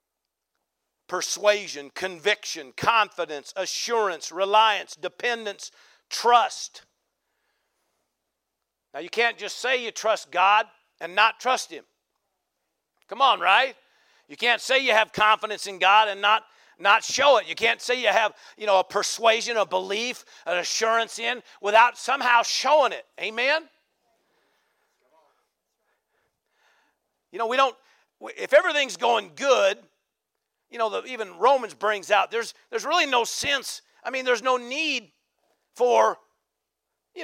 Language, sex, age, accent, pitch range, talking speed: English, male, 50-69, American, 215-285 Hz, 130 wpm